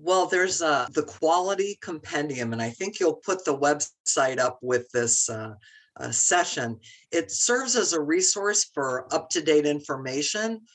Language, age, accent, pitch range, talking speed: English, 50-69, American, 145-205 Hz, 150 wpm